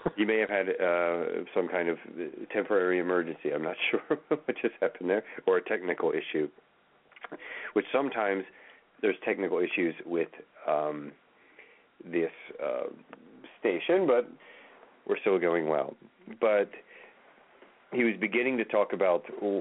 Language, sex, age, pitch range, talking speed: English, male, 40-59, 85-120 Hz, 130 wpm